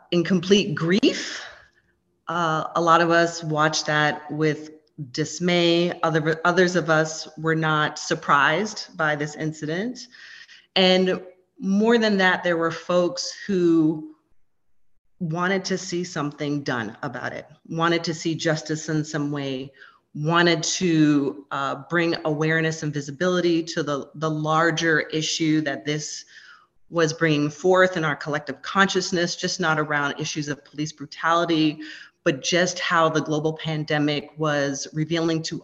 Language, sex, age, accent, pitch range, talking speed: English, female, 30-49, American, 150-175 Hz, 135 wpm